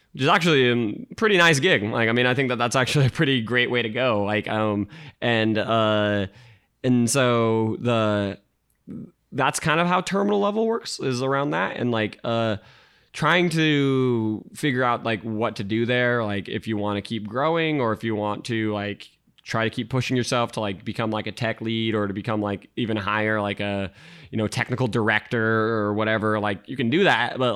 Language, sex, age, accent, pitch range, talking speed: English, male, 20-39, American, 110-130 Hz, 205 wpm